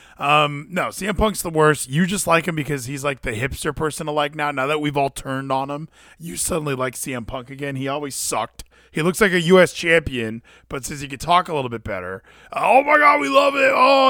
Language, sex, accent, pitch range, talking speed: English, male, American, 130-195 Hz, 245 wpm